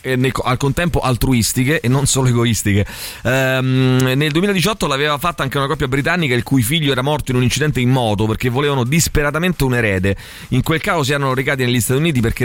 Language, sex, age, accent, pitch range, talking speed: Italian, male, 30-49, native, 120-160 Hz, 205 wpm